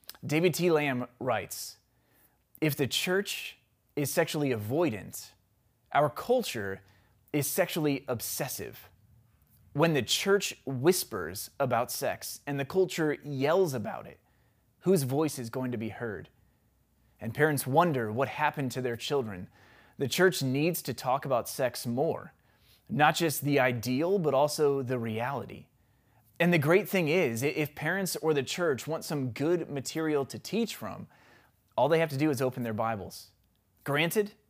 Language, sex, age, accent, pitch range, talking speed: English, male, 20-39, American, 115-160 Hz, 150 wpm